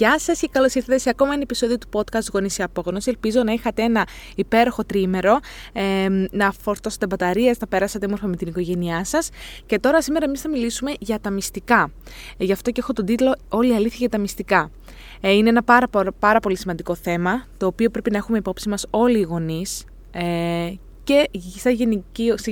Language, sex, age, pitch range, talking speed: Greek, female, 20-39, 195-250 Hz, 185 wpm